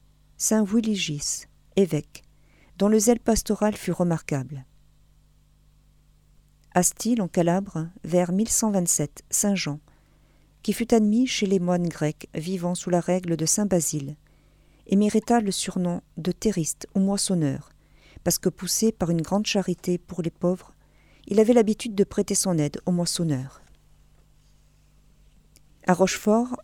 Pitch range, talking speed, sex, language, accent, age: 170-210 Hz, 135 wpm, female, French, French, 40-59